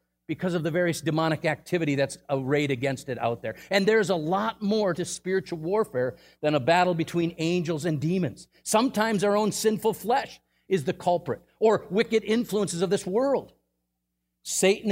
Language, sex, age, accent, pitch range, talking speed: English, male, 50-69, American, 155-215 Hz, 170 wpm